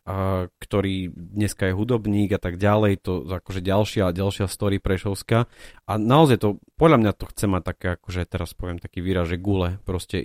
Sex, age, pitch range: male, 30-49, 95-110 Hz